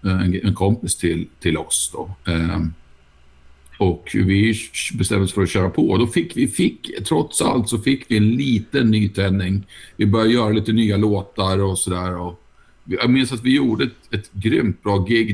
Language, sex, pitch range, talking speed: Swedish, male, 90-110 Hz, 170 wpm